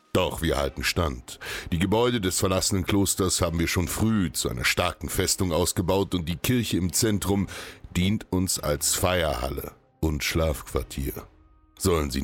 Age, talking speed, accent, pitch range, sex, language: 60-79, 150 wpm, German, 75-95 Hz, male, German